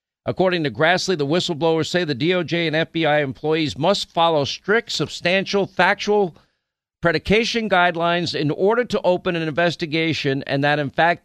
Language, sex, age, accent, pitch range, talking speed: English, male, 50-69, American, 125-170 Hz, 150 wpm